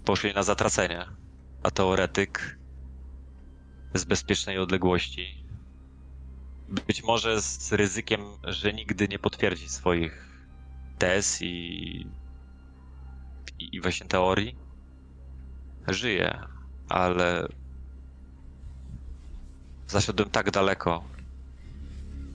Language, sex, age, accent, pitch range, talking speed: Polish, male, 20-39, native, 70-100 Hz, 75 wpm